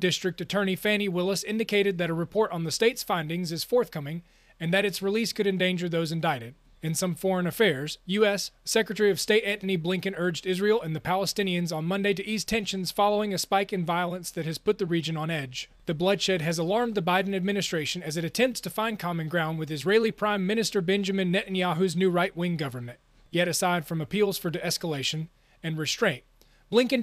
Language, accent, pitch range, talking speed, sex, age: English, American, 170-200 Hz, 190 wpm, male, 30-49